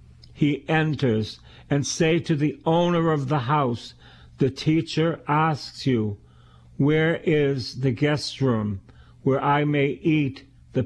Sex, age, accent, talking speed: male, 60-79, American, 135 wpm